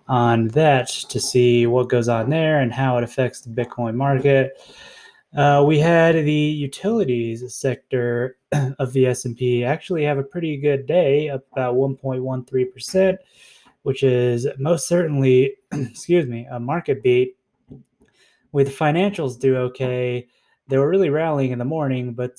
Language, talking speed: English, 150 wpm